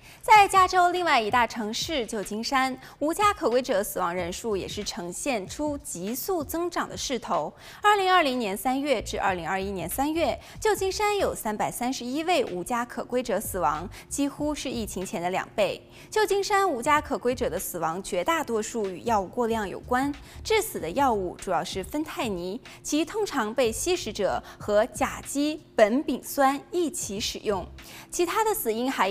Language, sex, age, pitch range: Chinese, female, 20-39, 215-330 Hz